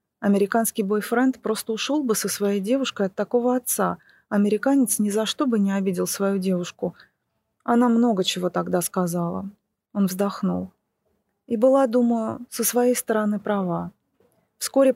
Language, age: Russian, 30-49